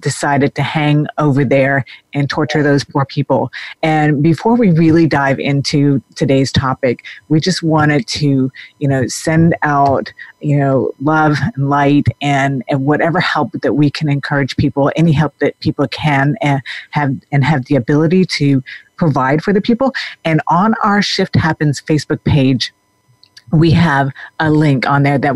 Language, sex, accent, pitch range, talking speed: English, female, American, 140-160 Hz, 165 wpm